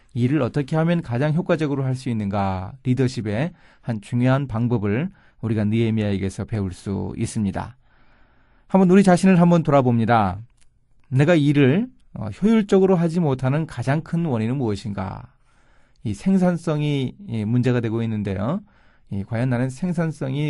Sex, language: male, Korean